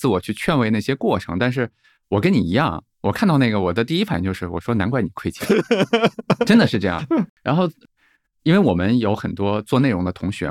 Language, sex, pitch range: Chinese, male, 95-140 Hz